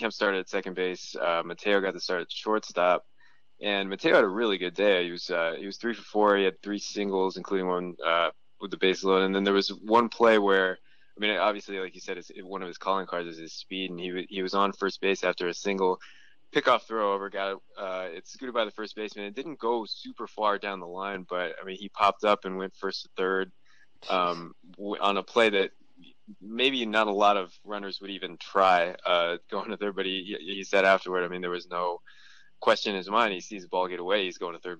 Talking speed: 250 wpm